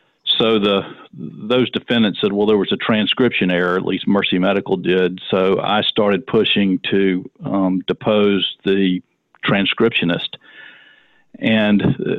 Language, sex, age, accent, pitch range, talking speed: English, male, 50-69, American, 95-110 Hz, 135 wpm